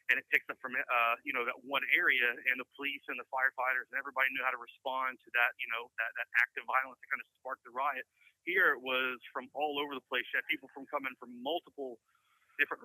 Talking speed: 250 wpm